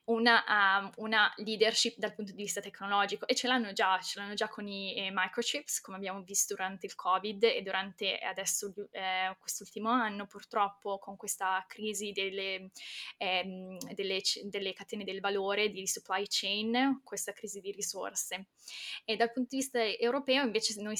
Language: Italian